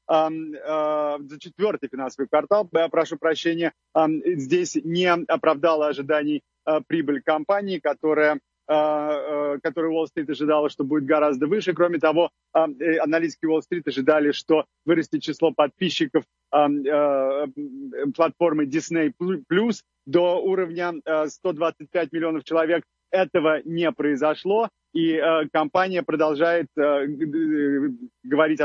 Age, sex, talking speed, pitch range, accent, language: 30-49, male, 90 wpm, 150-175 Hz, native, Russian